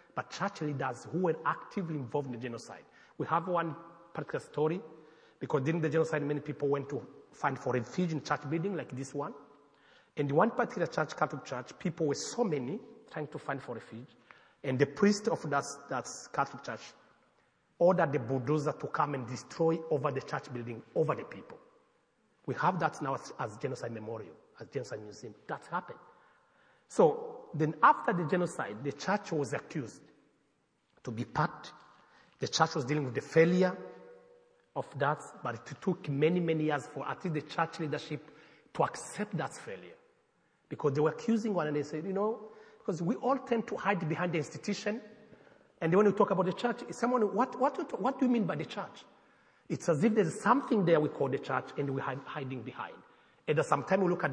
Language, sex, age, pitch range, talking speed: English, male, 40-59, 145-200 Hz, 195 wpm